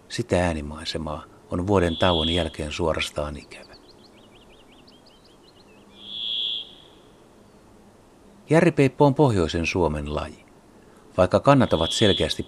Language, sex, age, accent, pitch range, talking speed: Finnish, male, 60-79, native, 80-105 Hz, 80 wpm